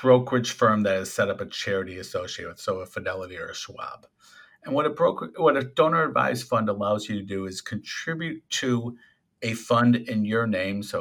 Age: 50-69